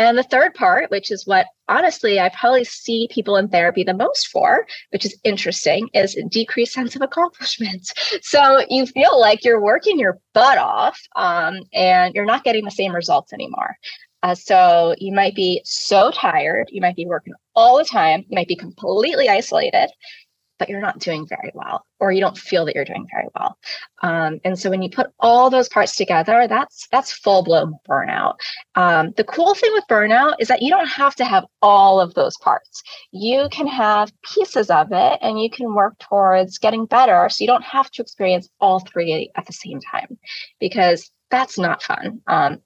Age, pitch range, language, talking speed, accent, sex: 20-39, 180-270 Hz, English, 195 wpm, American, female